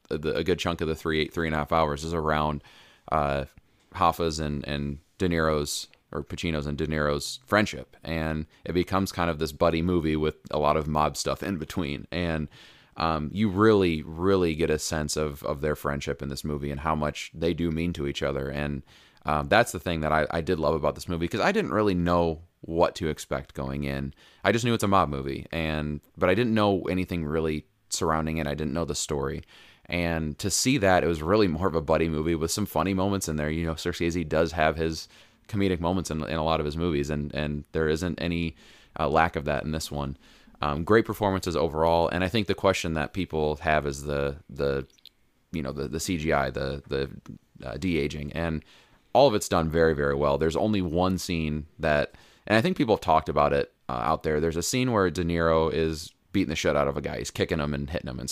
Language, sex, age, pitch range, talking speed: English, male, 30-49, 75-90 Hz, 230 wpm